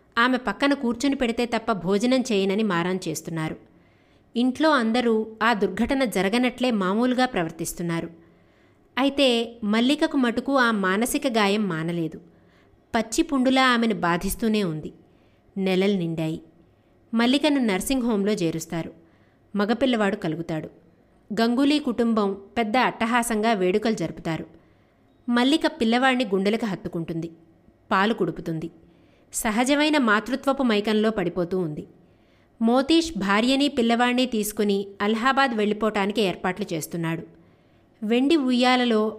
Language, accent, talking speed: Telugu, native, 90 wpm